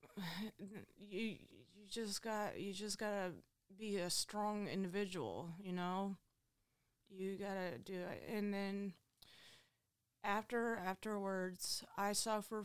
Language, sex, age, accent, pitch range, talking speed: English, female, 20-39, American, 160-195 Hz, 110 wpm